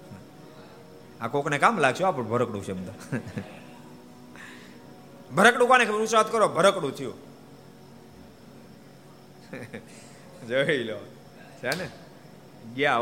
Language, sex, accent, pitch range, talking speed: Gujarati, male, native, 135-205 Hz, 70 wpm